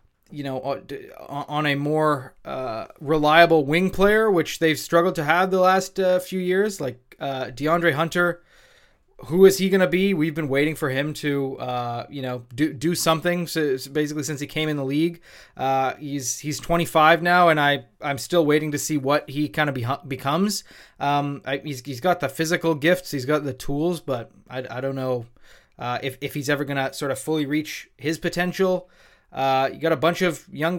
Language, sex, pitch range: English, male, 135-165 Hz